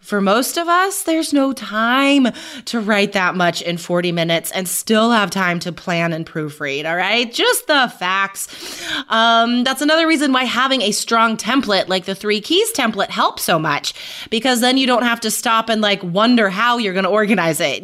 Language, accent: English, American